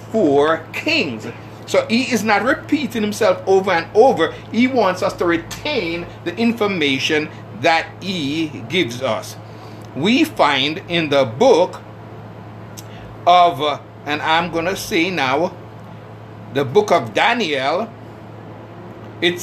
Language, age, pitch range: English, 60-79, 110-175 Hz